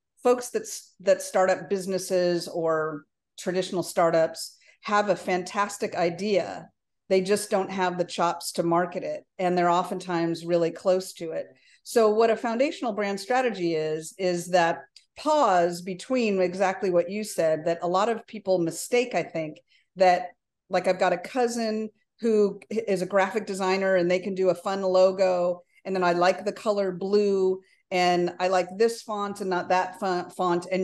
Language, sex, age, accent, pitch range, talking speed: English, female, 50-69, American, 175-205 Hz, 170 wpm